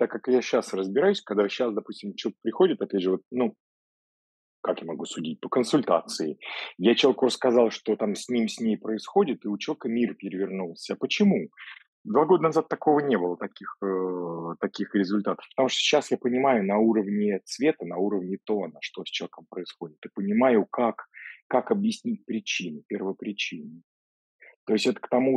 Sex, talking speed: male, 175 wpm